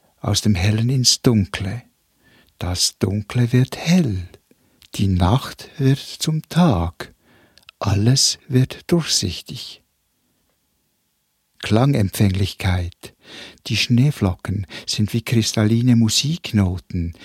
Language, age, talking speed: German, 60-79, 85 wpm